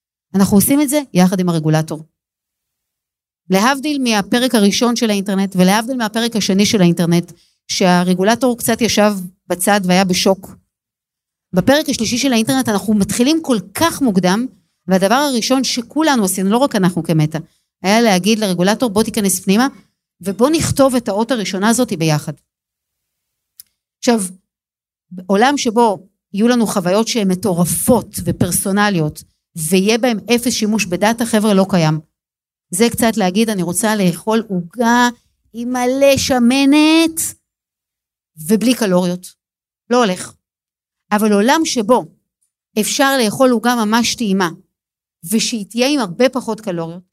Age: 50-69